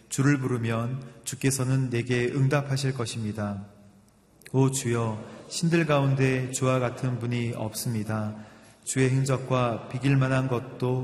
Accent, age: native, 30-49